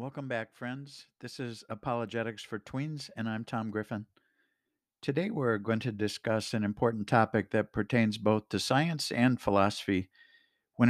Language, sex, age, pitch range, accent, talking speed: English, male, 60-79, 100-120 Hz, American, 155 wpm